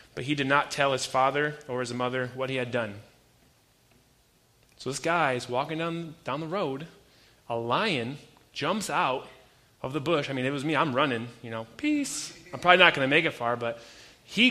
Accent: American